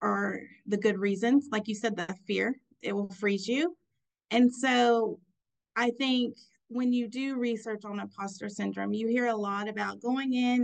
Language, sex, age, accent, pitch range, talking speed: English, female, 30-49, American, 205-235 Hz, 175 wpm